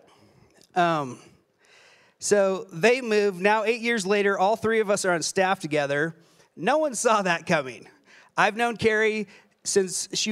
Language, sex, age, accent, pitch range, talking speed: English, male, 40-59, American, 165-210 Hz, 150 wpm